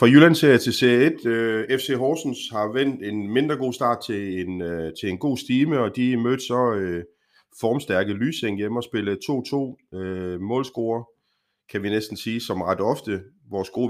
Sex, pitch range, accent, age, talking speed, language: male, 100-125 Hz, native, 30-49, 175 wpm, Danish